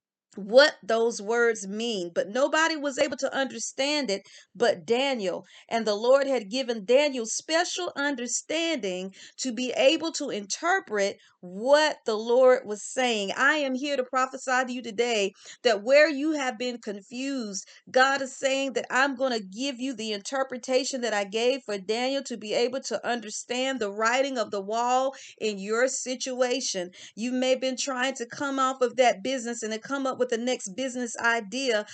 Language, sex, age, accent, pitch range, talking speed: English, female, 40-59, American, 220-270 Hz, 175 wpm